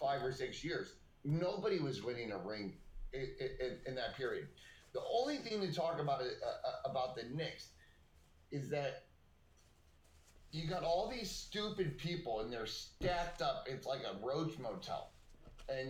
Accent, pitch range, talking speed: American, 130-220 Hz, 160 wpm